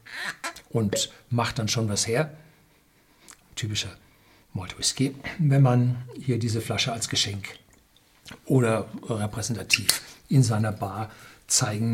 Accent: German